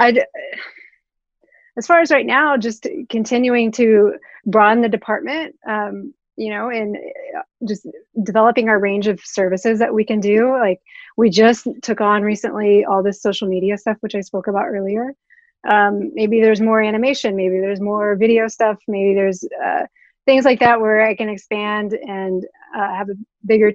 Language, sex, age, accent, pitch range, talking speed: English, female, 30-49, American, 200-240 Hz, 165 wpm